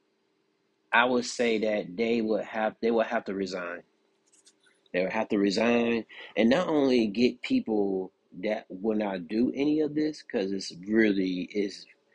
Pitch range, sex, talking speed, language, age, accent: 100-115 Hz, male, 165 wpm, English, 30-49, American